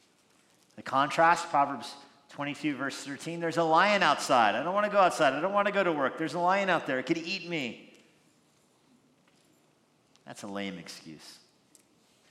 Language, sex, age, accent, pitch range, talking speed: English, male, 50-69, American, 120-155 Hz, 175 wpm